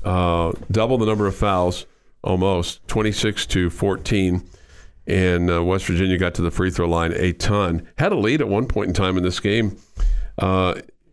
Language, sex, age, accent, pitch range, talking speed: English, male, 50-69, American, 85-100 Hz, 185 wpm